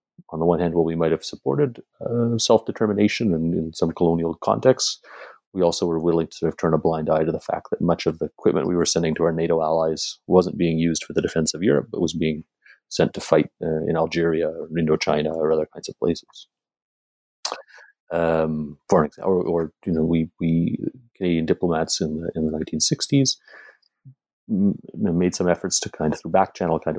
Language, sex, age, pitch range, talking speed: English, male, 30-49, 80-90 Hz, 210 wpm